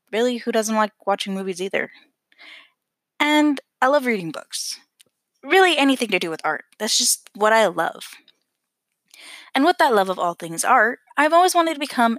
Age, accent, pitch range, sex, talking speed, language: 10-29, American, 200-285 Hz, female, 175 wpm, English